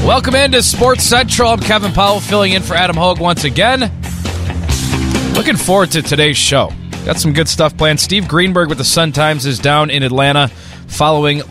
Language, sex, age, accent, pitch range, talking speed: English, male, 20-39, American, 115-155 Hz, 175 wpm